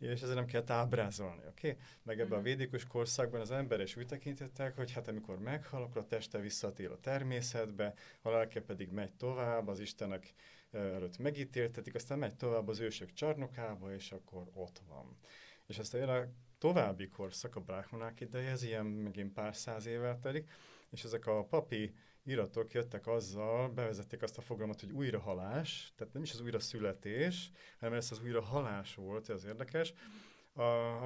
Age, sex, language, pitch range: 30-49, male, Hungarian, 105-125 Hz